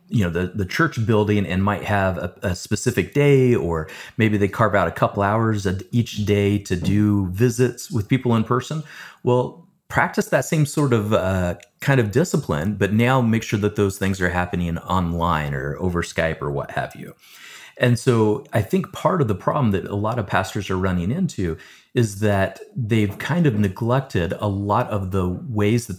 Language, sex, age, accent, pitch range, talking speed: English, male, 30-49, American, 90-120 Hz, 195 wpm